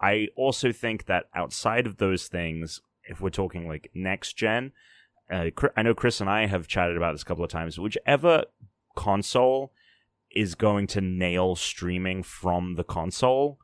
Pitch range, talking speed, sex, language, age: 90-105 Hz, 165 wpm, male, English, 30-49